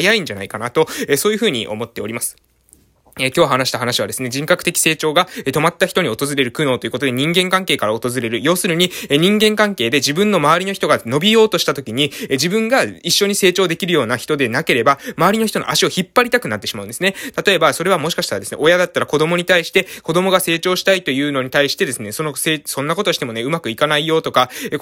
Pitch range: 135-185 Hz